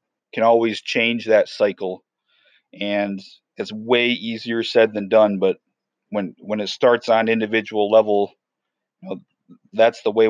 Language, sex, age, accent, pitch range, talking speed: English, male, 30-49, American, 105-125 Hz, 145 wpm